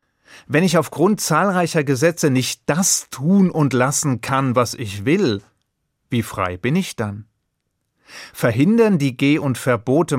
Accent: German